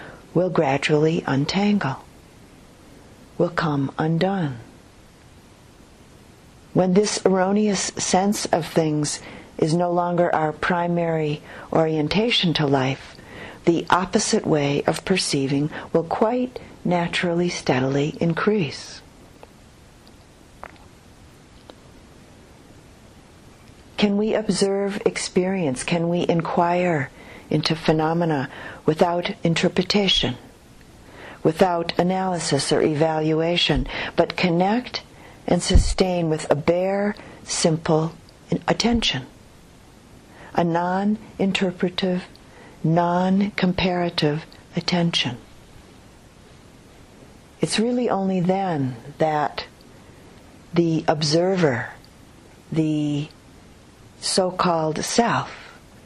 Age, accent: 50-69, American